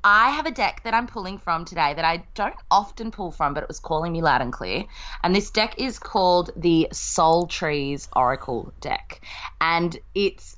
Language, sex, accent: English, female, Australian